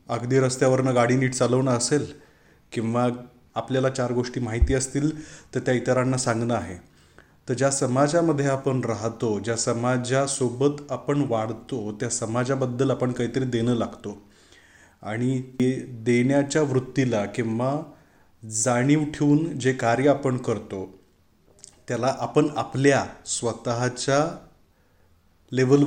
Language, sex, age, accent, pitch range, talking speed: Marathi, male, 30-49, native, 120-145 Hz, 85 wpm